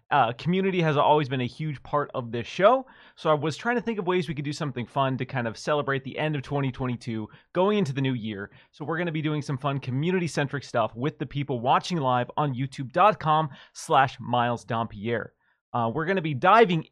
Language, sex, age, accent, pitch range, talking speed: English, male, 30-49, American, 130-185 Hz, 215 wpm